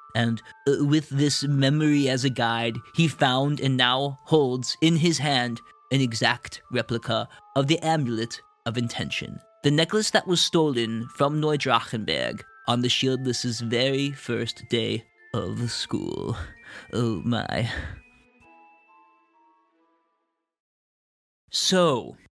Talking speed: 110 wpm